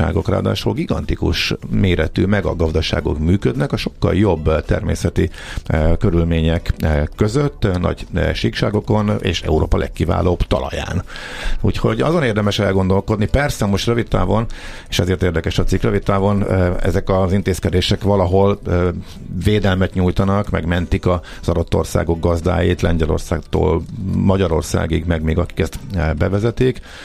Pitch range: 85-100 Hz